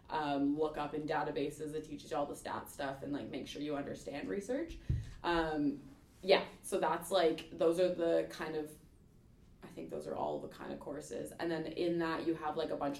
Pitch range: 145-165 Hz